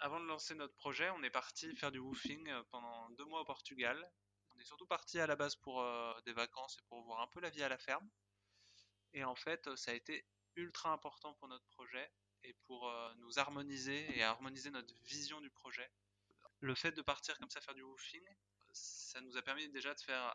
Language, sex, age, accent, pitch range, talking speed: French, male, 20-39, French, 115-140 Hz, 220 wpm